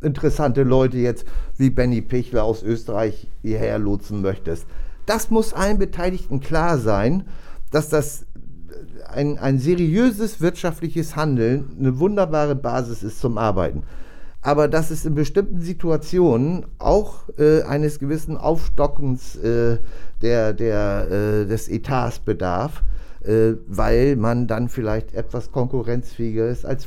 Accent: German